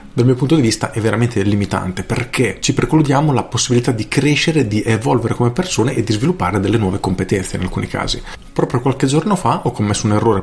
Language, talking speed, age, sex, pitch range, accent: Italian, 205 wpm, 40-59, male, 100-125 Hz, native